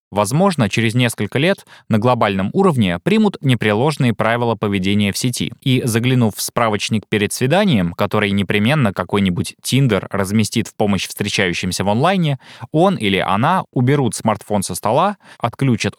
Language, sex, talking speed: Russian, male, 140 wpm